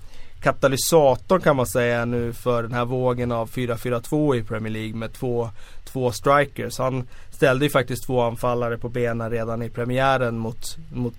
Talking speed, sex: 165 wpm, male